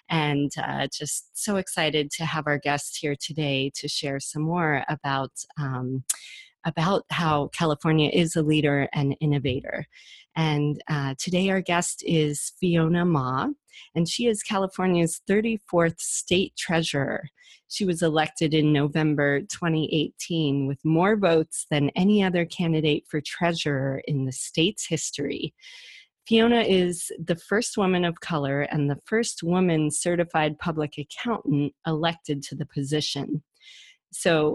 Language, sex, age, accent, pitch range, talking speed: English, female, 30-49, American, 145-180 Hz, 135 wpm